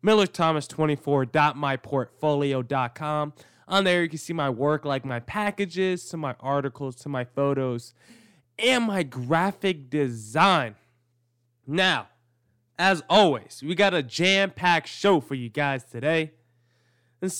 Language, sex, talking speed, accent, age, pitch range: English, male, 120 wpm, American, 20-39, 130-195 Hz